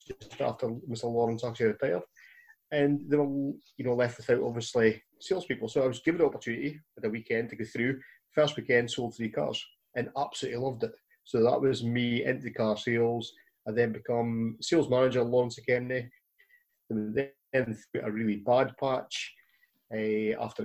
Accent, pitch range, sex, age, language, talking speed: British, 115-140 Hz, male, 30-49, English, 170 wpm